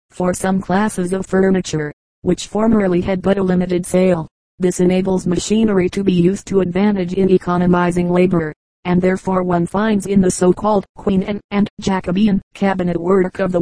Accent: American